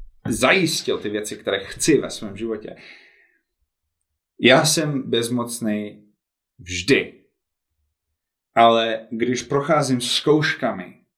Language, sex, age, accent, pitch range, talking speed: Czech, male, 30-49, native, 110-135 Hz, 85 wpm